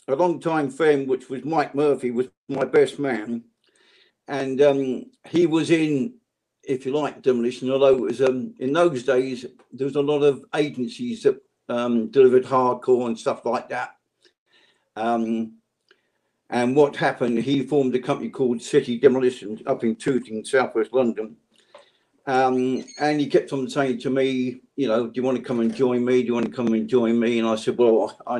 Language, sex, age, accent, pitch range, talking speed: English, male, 50-69, British, 120-140 Hz, 185 wpm